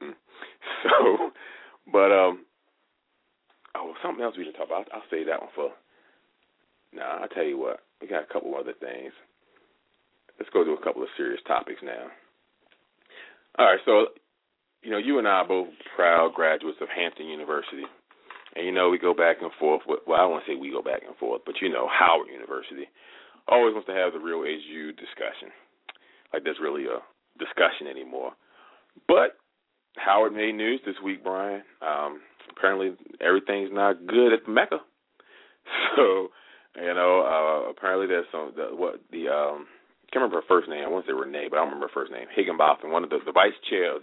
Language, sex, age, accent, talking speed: English, male, 40-59, American, 190 wpm